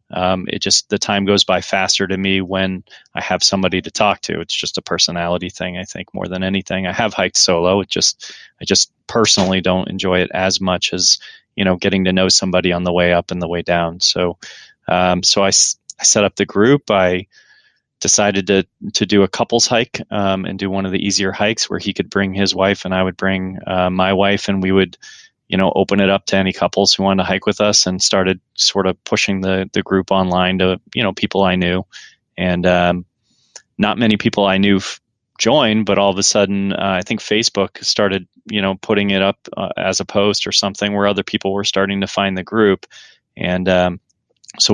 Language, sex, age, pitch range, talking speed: English, male, 20-39, 90-100 Hz, 225 wpm